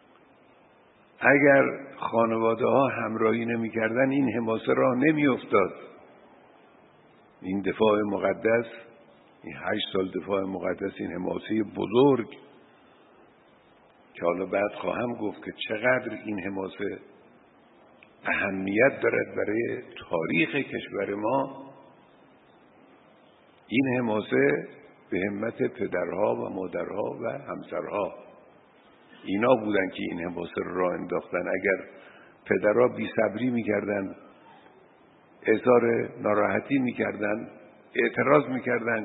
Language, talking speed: Persian, 95 wpm